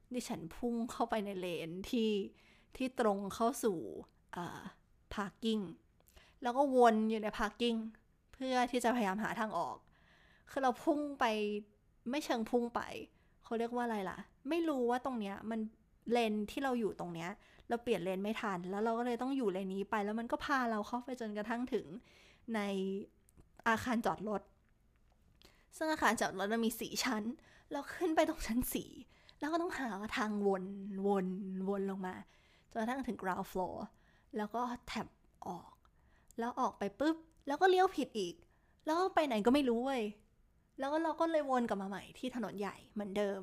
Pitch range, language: 200-255 Hz, Thai